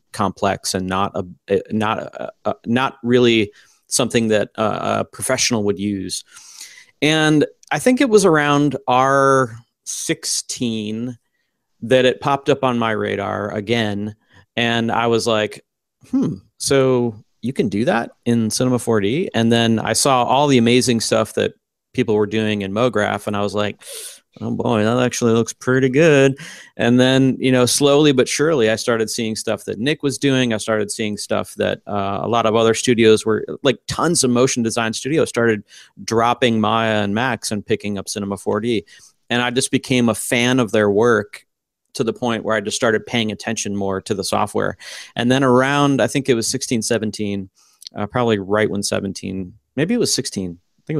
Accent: American